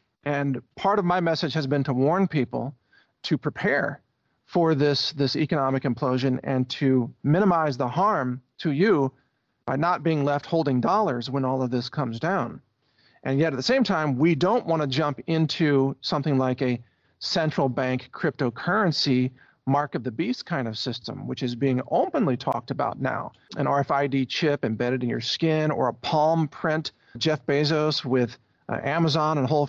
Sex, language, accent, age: male, English, American, 40-59